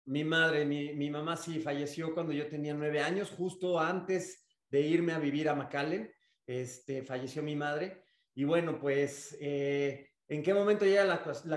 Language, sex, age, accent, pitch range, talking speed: Spanish, male, 40-59, Mexican, 150-185 Hz, 175 wpm